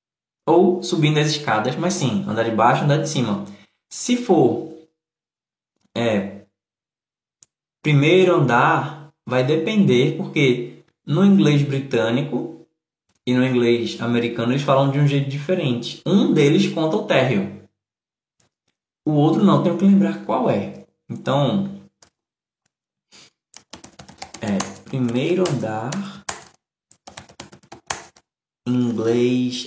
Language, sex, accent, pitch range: Portuguese, male, Brazilian, 115-160 Hz